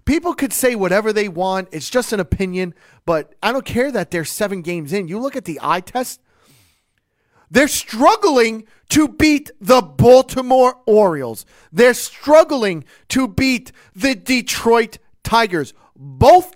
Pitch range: 150-220 Hz